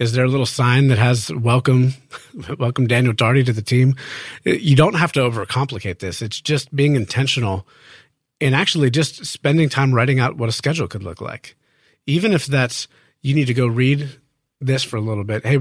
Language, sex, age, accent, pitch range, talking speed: English, male, 40-59, American, 115-140 Hz, 195 wpm